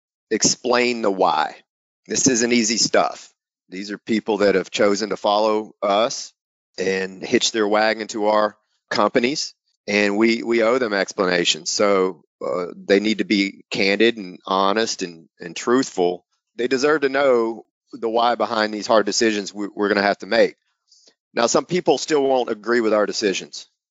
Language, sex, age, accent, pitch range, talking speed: English, male, 40-59, American, 105-135 Hz, 165 wpm